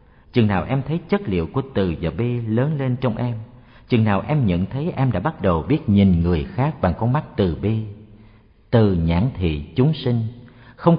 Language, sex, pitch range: Vietnamese, male, 95-135 Hz